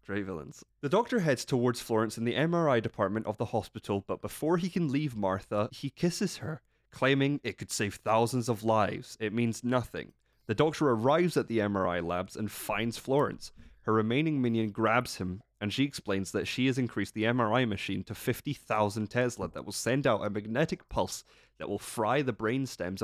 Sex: male